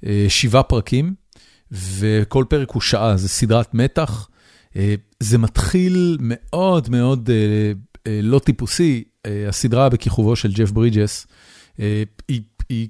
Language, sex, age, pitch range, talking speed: Hebrew, male, 40-59, 105-125 Hz, 100 wpm